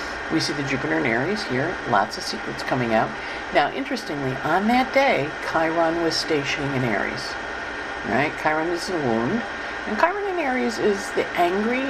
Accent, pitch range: American, 130-185 Hz